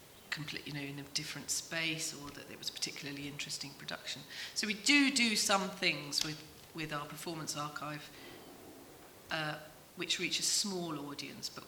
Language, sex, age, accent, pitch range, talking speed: English, female, 40-59, British, 150-195 Hz, 170 wpm